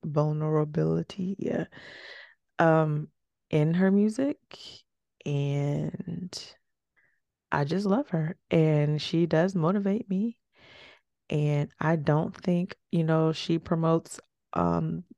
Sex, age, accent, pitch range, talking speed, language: female, 20-39, American, 150-175 Hz, 100 wpm, English